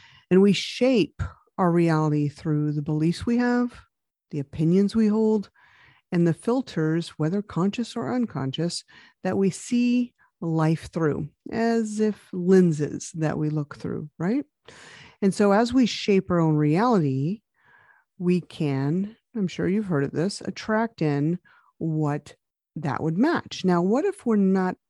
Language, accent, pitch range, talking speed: English, American, 155-215 Hz, 145 wpm